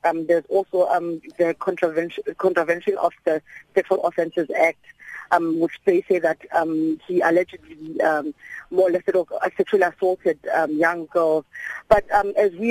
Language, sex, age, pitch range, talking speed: English, female, 30-49, 165-190 Hz, 155 wpm